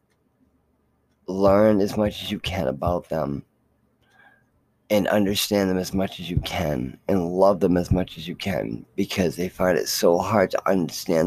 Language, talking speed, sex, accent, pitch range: English, 170 wpm, male, American, 90-110 Hz